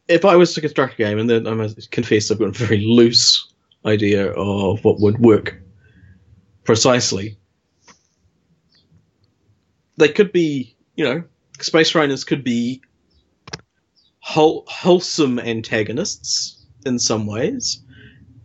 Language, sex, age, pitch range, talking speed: English, male, 30-49, 105-135 Hz, 125 wpm